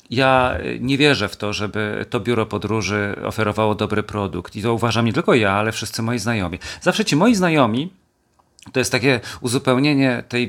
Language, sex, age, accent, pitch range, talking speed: Polish, male, 40-59, native, 100-125 Hz, 175 wpm